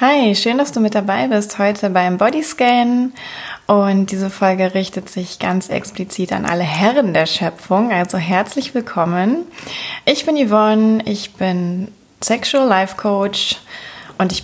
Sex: female